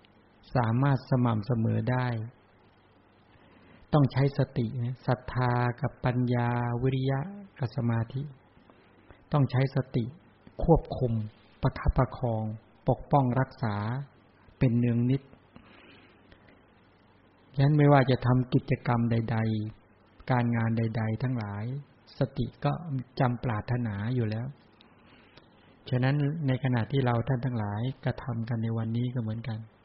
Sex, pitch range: male, 110-130 Hz